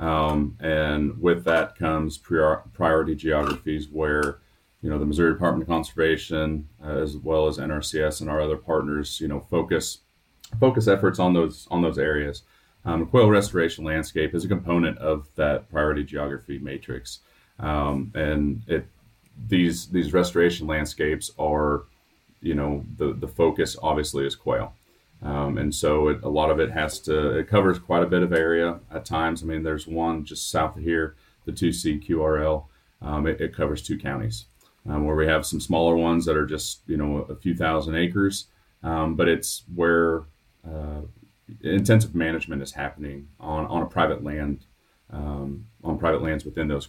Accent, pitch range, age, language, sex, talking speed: American, 75-85 Hz, 30-49, English, male, 175 wpm